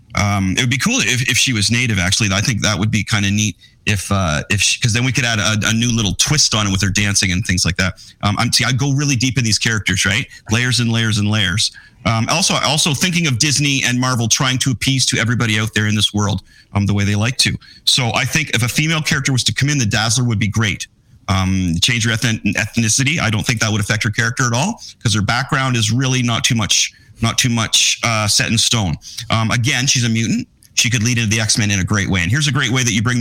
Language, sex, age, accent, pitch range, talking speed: English, male, 30-49, American, 105-125 Hz, 270 wpm